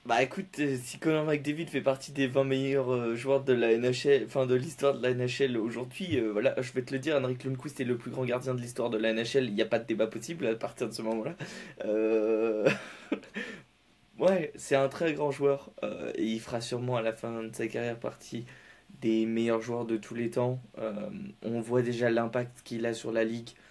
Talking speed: 225 wpm